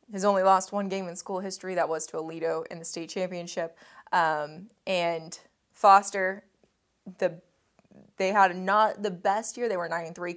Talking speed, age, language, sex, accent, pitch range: 170 wpm, 20-39, English, female, American, 170-195 Hz